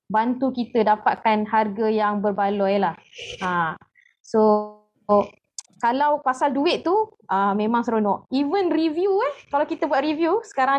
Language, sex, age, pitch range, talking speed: Malay, female, 20-39, 220-305 Hz, 145 wpm